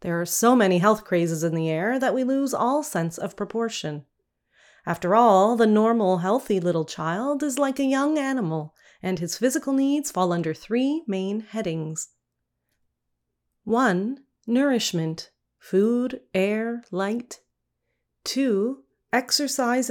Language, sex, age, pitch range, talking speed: English, female, 30-49, 180-245 Hz, 135 wpm